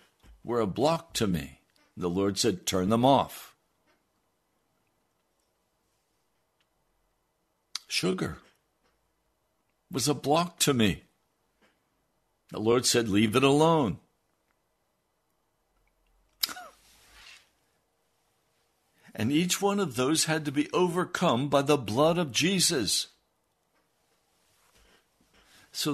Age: 60-79